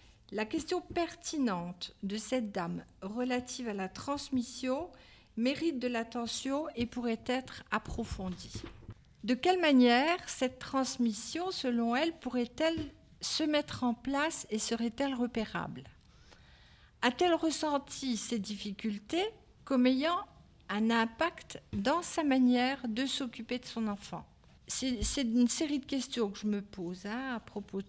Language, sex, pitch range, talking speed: French, female, 215-280 Hz, 130 wpm